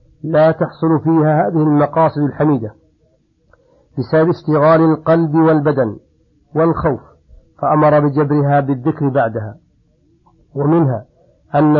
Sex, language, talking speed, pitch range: male, Arabic, 85 wpm, 140-160 Hz